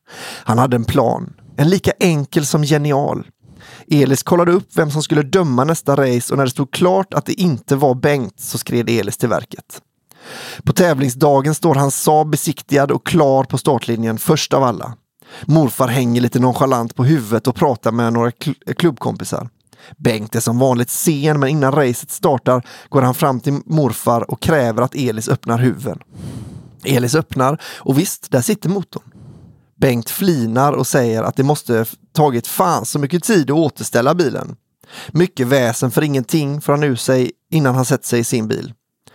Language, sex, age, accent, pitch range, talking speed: English, male, 30-49, Swedish, 125-155 Hz, 175 wpm